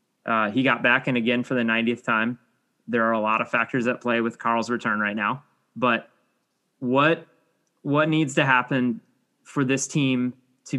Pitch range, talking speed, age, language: 115-155 Hz, 185 wpm, 20-39, English